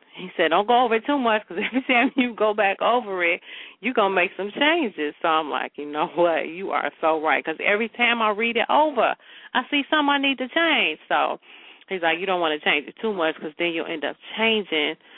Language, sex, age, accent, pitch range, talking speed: English, female, 40-59, American, 155-210 Hz, 250 wpm